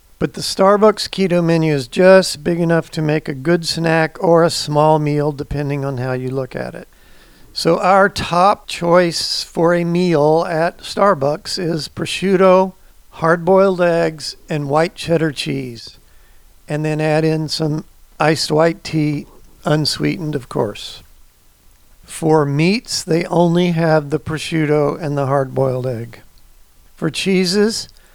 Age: 50-69